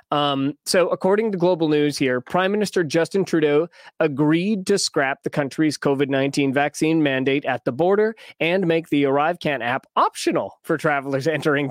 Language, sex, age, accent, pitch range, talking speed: English, male, 20-39, American, 150-205 Hz, 165 wpm